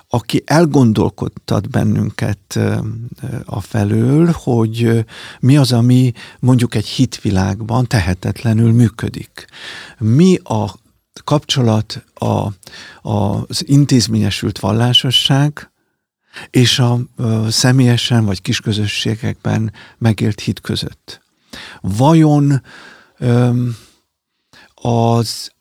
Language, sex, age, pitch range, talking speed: Hungarian, male, 50-69, 110-125 Hz, 75 wpm